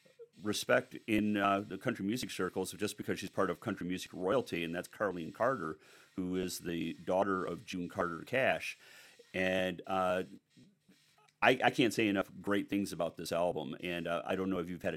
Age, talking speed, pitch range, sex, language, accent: 40-59, 190 wpm, 85-100 Hz, male, English, American